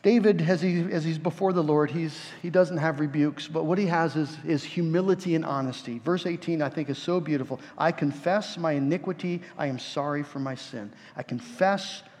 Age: 50-69